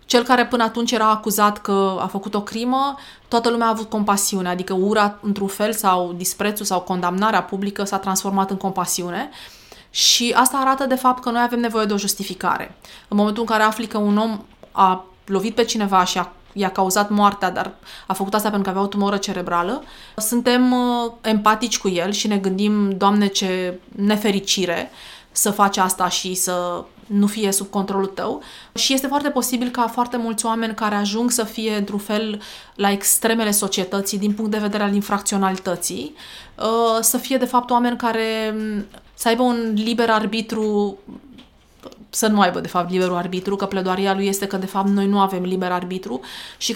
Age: 20-39